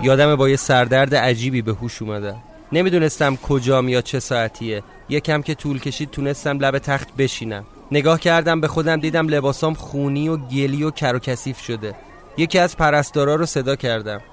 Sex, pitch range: male, 130-165 Hz